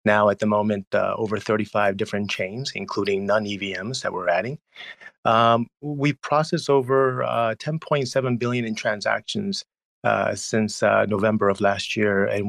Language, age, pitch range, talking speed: English, 30-49, 100-115 Hz, 165 wpm